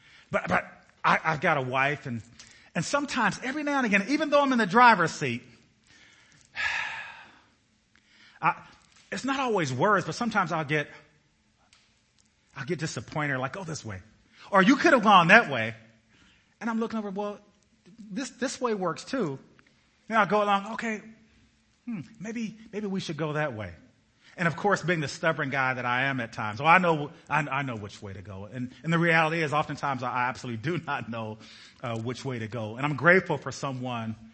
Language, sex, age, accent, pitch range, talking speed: English, male, 30-49, American, 110-175 Hz, 190 wpm